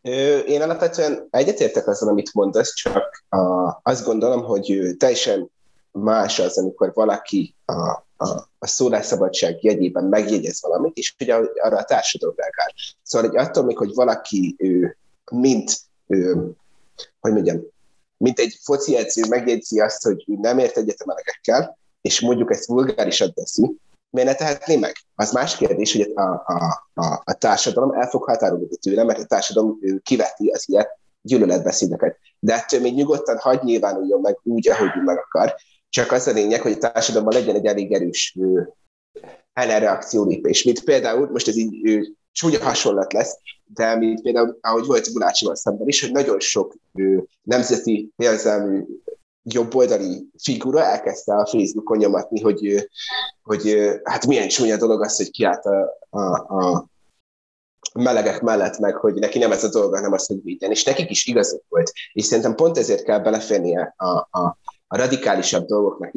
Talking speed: 150 wpm